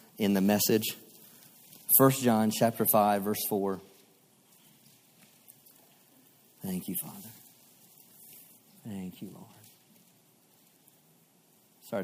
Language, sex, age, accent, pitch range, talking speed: English, male, 50-69, American, 115-165 Hz, 80 wpm